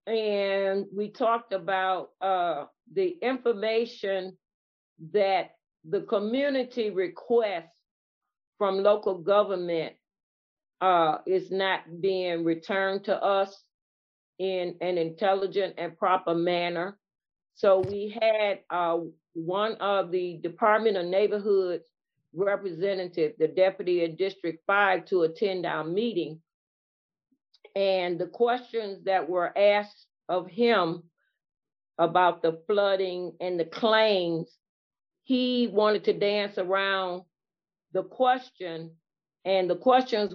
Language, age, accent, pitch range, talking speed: English, 40-59, American, 175-220 Hz, 105 wpm